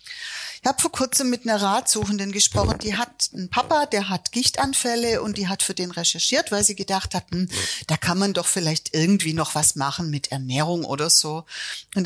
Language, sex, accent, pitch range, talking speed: German, female, German, 170-230 Hz, 195 wpm